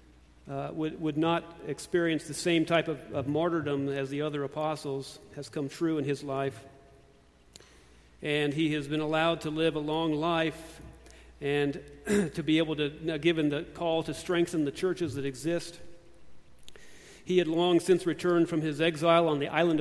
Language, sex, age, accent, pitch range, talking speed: English, male, 50-69, American, 140-170 Hz, 170 wpm